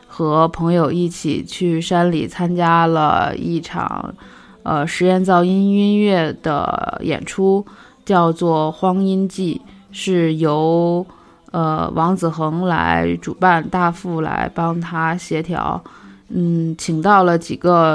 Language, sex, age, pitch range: Chinese, female, 20-39, 155-175 Hz